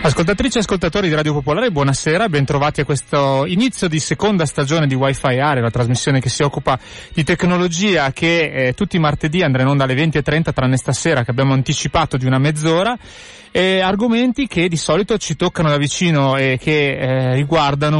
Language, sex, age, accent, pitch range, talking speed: Italian, male, 30-49, native, 135-170 Hz, 185 wpm